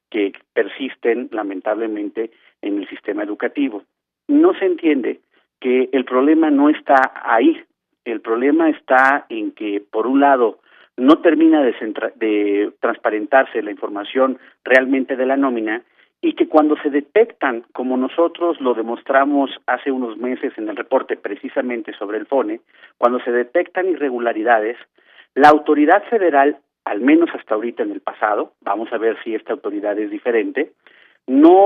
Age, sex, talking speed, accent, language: 50-69, male, 145 wpm, Mexican, Spanish